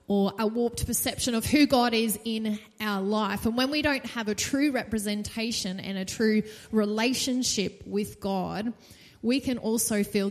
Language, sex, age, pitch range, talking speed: English, female, 20-39, 210-255 Hz, 170 wpm